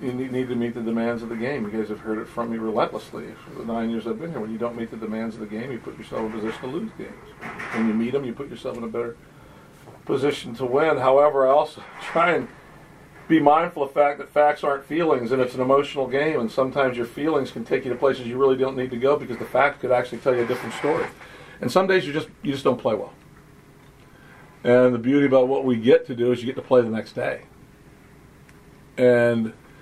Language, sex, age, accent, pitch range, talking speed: English, male, 50-69, American, 115-140 Hz, 255 wpm